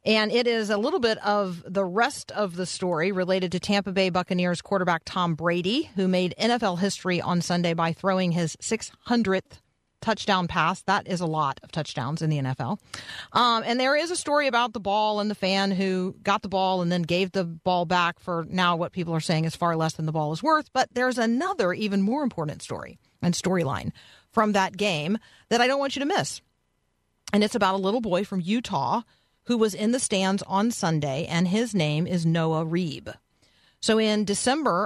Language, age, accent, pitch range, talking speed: English, 40-59, American, 165-205 Hz, 205 wpm